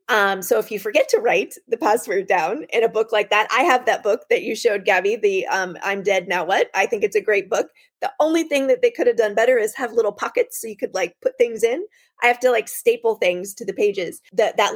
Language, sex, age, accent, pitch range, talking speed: English, female, 30-49, American, 190-300 Hz, 265 wpm